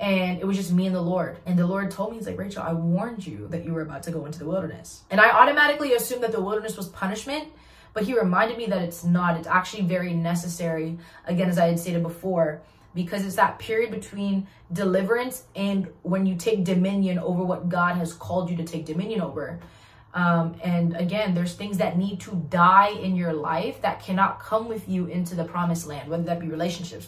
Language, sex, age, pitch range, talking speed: English, female, 20-39, 170-215 Hz, 220 wpm